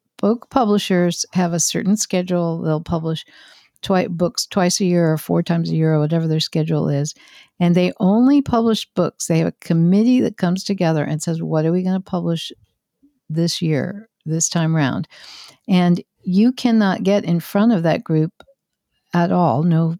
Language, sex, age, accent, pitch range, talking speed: English, female, 60-79, American, 160-190 Hz, 180 wpm